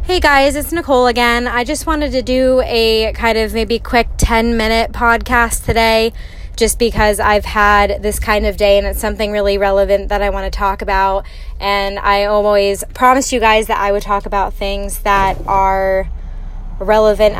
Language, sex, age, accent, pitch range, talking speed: English, female, 10-29, American, 200-225 Hz, 180 wpm